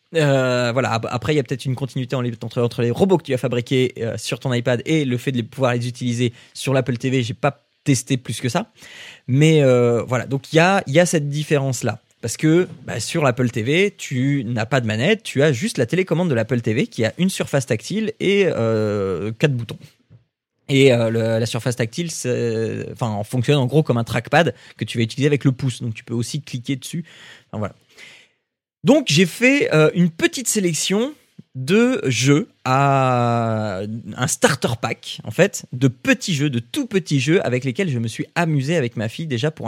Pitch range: 120-155 Hz